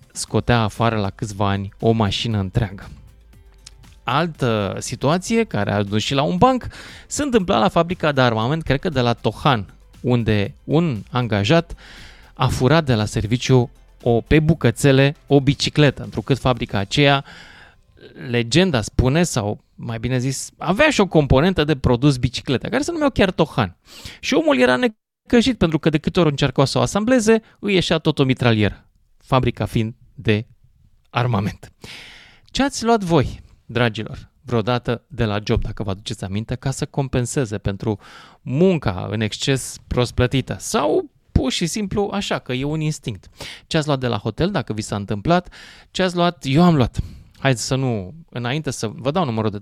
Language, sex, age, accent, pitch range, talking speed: Romanian, male, 20-39, native, 110-160 Hz, 170 wpm